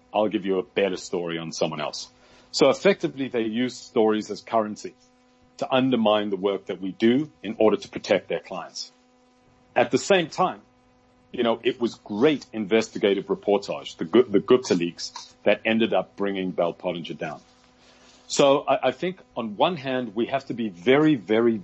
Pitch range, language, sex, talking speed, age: 100-125 Hz, English, male, 175 wpm, 40-59